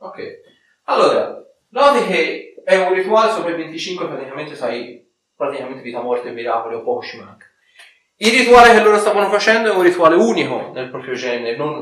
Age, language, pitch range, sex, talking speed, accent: 30-49, Italian, 125-190 Hz, male, 155 wpm, native